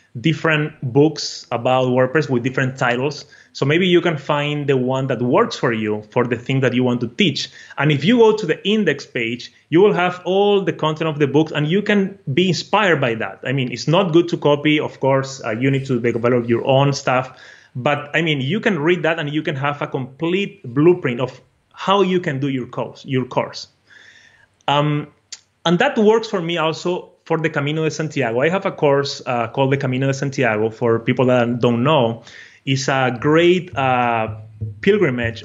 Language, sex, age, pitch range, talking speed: English, male, 30-49, 125-160 Hz, 205 wpm